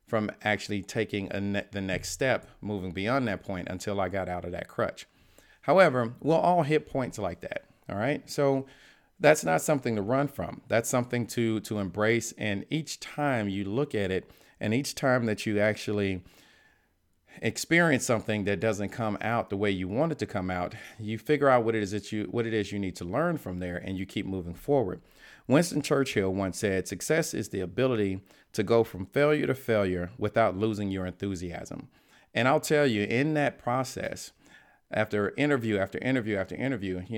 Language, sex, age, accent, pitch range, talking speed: English, male, 40-59, American, 95-130 Hz, 190 wpm